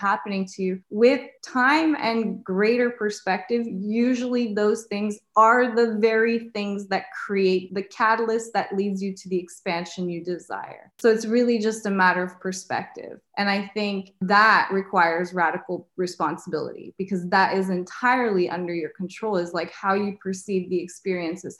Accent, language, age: American, English, 20-39